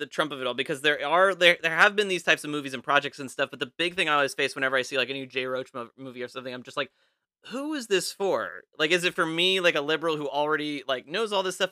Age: 30-49